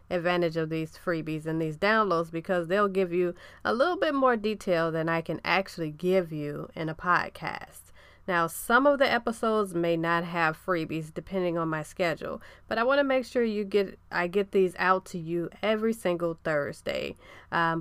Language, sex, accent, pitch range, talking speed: English, female, American, 165-215 Hz, 190 wpm